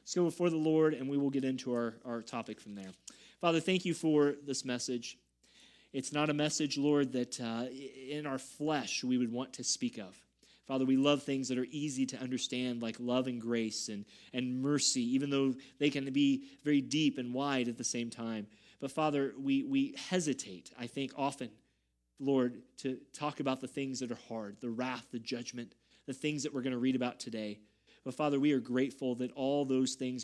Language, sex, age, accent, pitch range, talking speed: English, male, 30-49, American, 120-140 Hz, 210 wpm